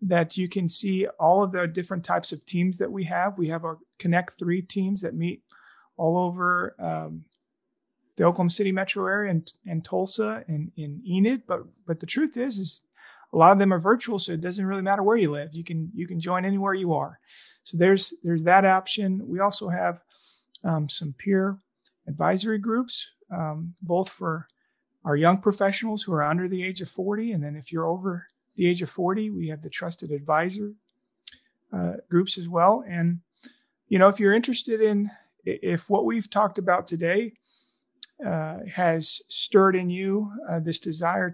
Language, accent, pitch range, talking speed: English, American, 165-200 Hz, 185 wpm